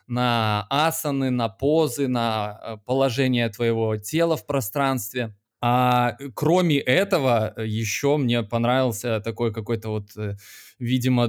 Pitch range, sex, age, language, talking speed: 115-140 Hz, male, 20-39, Russian, 105 wpm